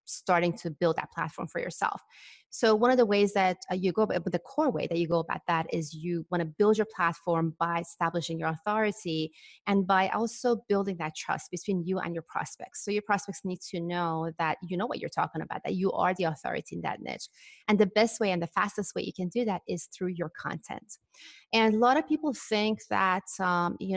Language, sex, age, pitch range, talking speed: English, female, 30-49, 170-210 Hz, 230 wpm